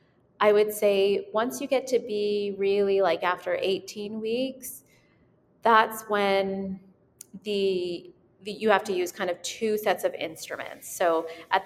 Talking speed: 150 wpm